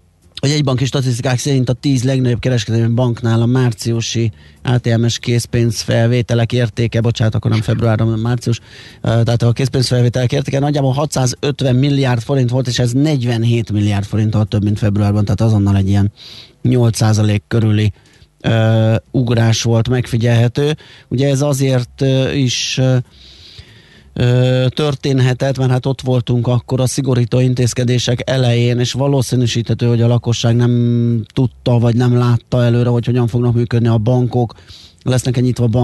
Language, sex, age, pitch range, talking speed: Hungarian, male, 30-49, 115-125 Hz, 135 wpm